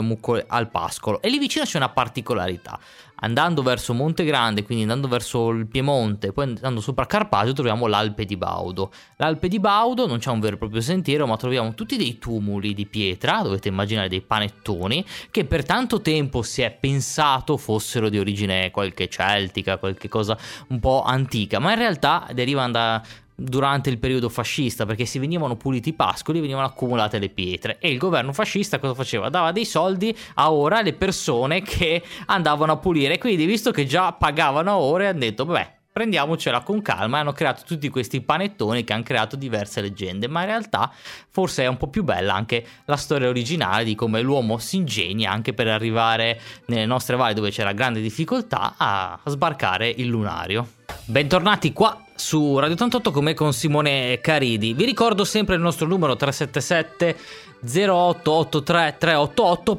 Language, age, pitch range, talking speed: Italian, 20-39, 115-160 Hz, 175 wpm